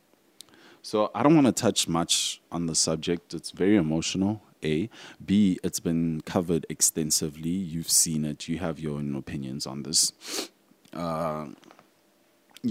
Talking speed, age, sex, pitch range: 140 wpm, 20-39, male, 75-90 Hz